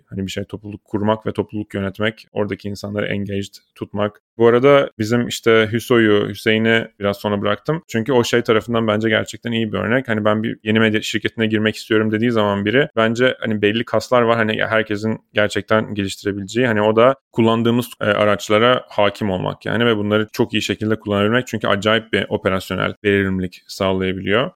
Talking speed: 170 wpm